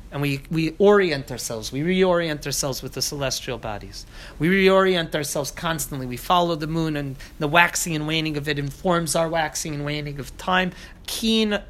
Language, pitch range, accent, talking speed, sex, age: English, 135-180 Hz, American, 185 wpm, male, 30-49